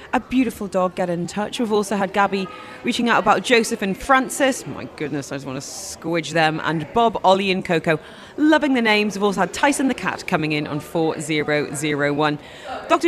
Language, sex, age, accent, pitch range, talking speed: English, female, 30-49, British, 160-250 Hz, 195 wpm